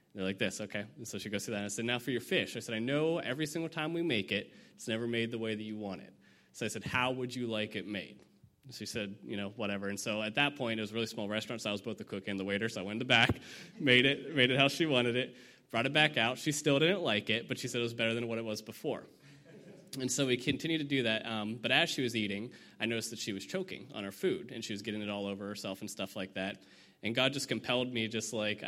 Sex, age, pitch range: male, 20-39, 105-125 Hz